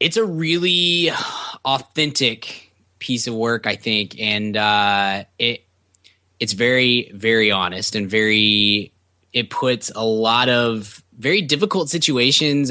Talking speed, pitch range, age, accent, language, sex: 125 wpm, 105-130 Hz, 20-39, American, English, male